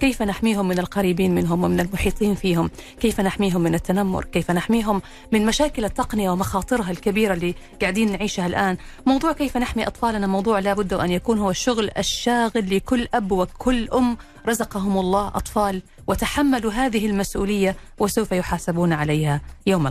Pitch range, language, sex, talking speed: 180-230 Hz, Arabic, female, 150 wpm